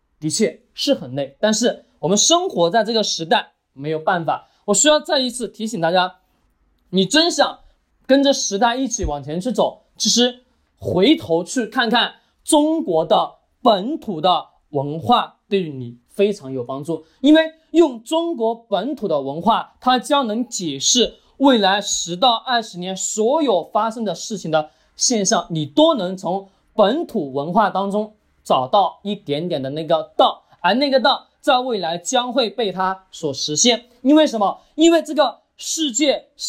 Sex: male